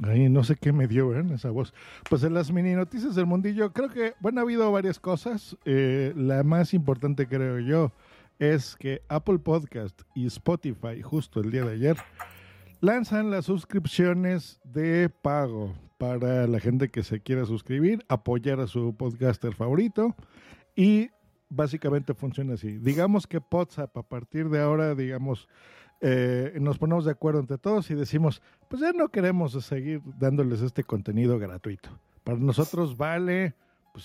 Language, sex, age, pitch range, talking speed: Spanish, male, 50-69, 125-170 Hz, 160 wpm